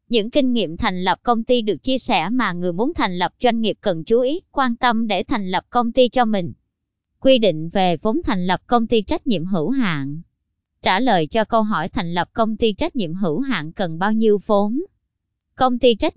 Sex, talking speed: male, 225 wpm